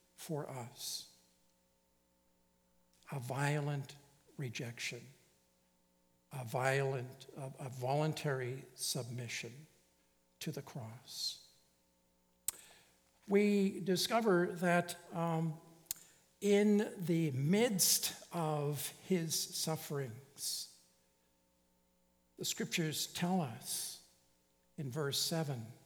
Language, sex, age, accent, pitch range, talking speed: English, male, 60-79, American, 125-185 Hz, 70 wpm